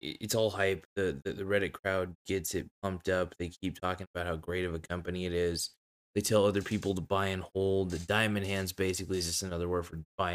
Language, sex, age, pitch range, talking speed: English, male, 20-39, 85-100 Hz, 230 wpm